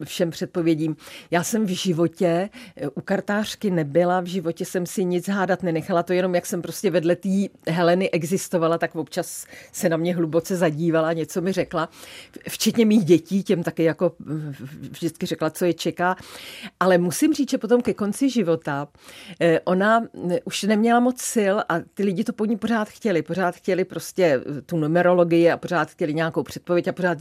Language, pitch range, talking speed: Czech, 165-200 Hz, 175 wpm